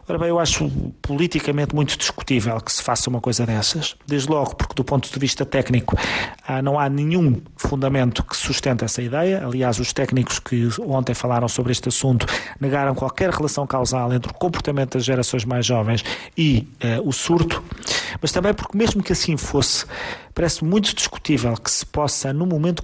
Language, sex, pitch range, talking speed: Portuguese, male, 125-150 Hz, 180 wpm